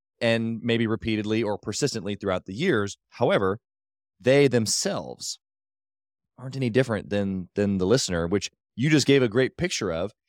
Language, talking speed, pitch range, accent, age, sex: English, 150 wpm, 95-120 Hz, American, 20-39, male